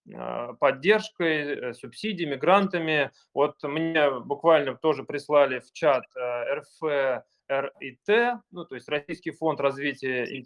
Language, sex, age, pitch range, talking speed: Russian, male, 20-39, 140-185 Hz, 100 wpm